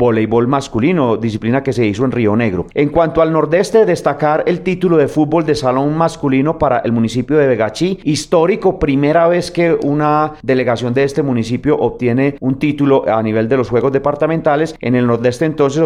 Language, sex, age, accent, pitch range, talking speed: Spanish, male, 40-59, Colombian, 120-155 Hz, 180 wpm